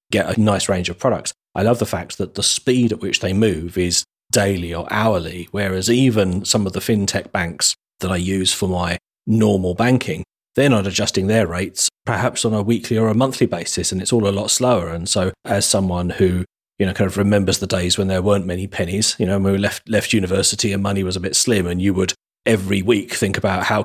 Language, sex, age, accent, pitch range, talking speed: English, male, 30-49, British, 90-105 Hz, 230 wpm